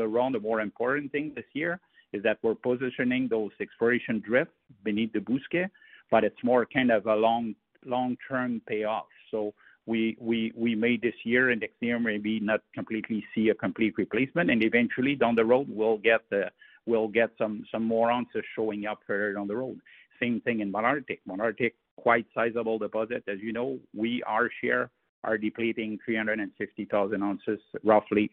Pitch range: 110-120 Hz